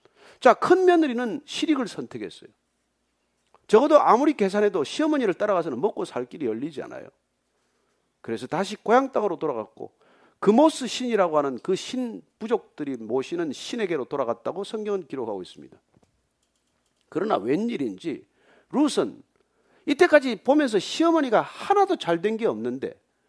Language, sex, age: Korean, male, 40-59